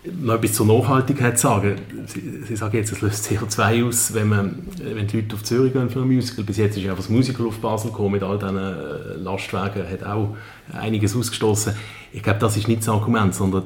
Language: German